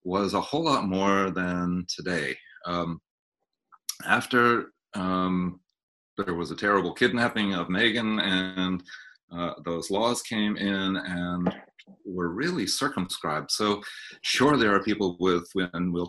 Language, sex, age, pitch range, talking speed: English, male, 40-59, 85-100 Hz, 130 wpm